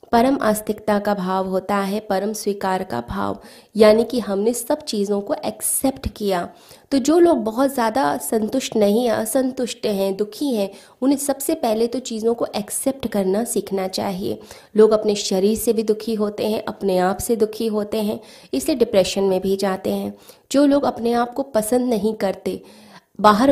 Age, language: 20-39, Hindi